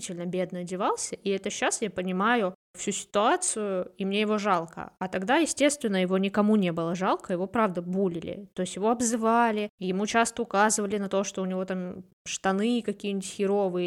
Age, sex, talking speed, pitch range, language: 20-39, female, 175 wpm, 185-210 Hz, Russian